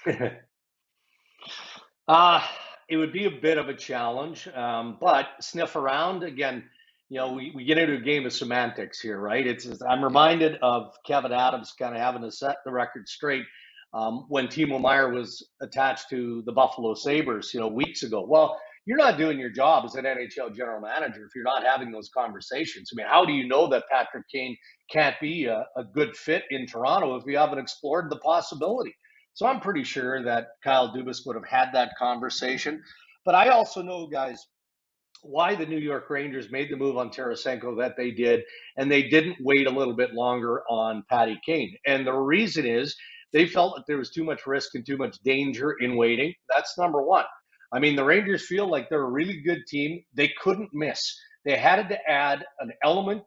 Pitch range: 125-155 Hz